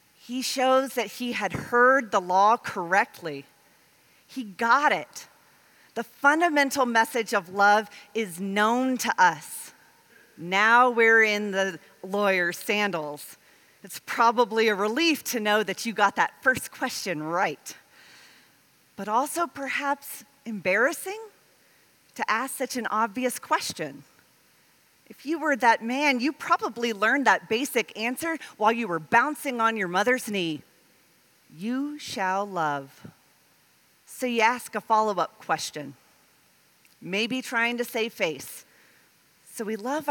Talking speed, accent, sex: 130 wpm, American, female